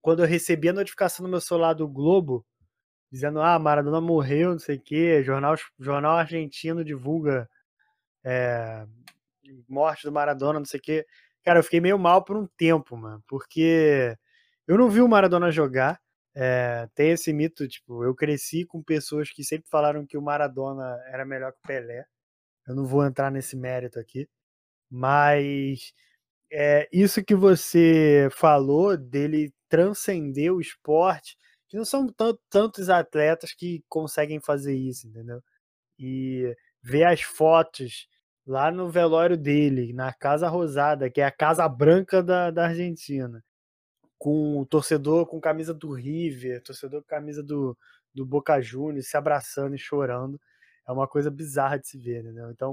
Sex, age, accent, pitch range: male, 20-39, Brazilian, 135-165 Hz